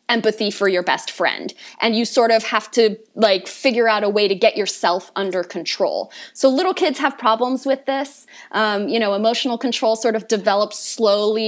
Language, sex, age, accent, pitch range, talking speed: English, female, 20-39, American, 205-270 Hz, 195 wpm